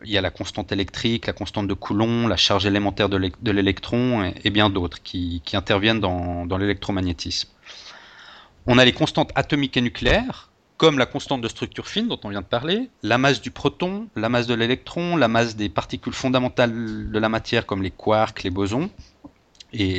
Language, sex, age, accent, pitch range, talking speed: French, male, 30-49, French, 100-135 Hz, 200 wpm